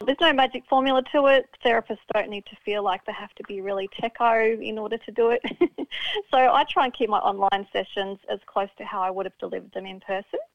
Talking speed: 240 wpm